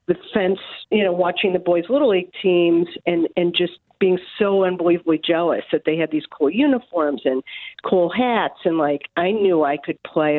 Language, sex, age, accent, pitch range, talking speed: English, female, 50-69, American, 165-215 Hz, 190 wpm